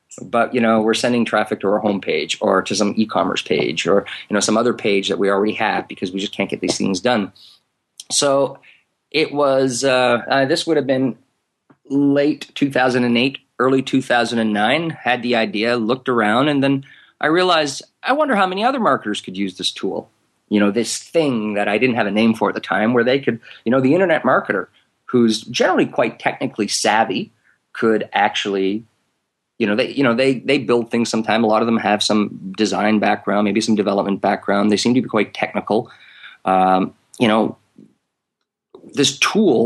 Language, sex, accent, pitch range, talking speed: English, male, American, 105-125 Hz, 190 wpm